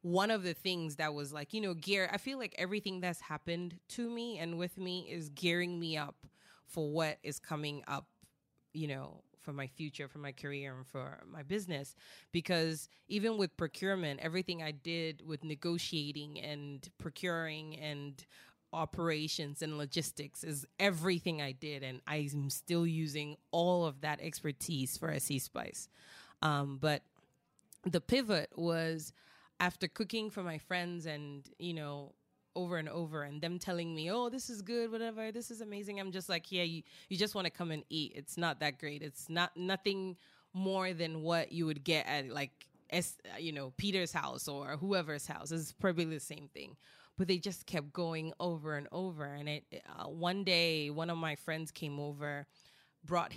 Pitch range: 150-180 Hz